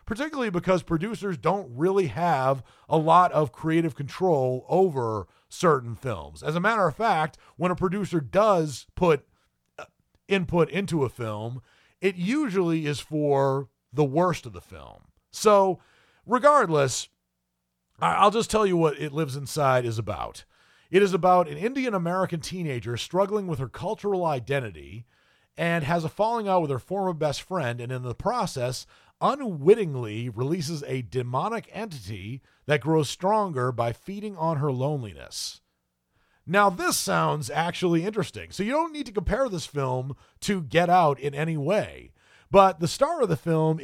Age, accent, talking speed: 40-59, American, 155 wpm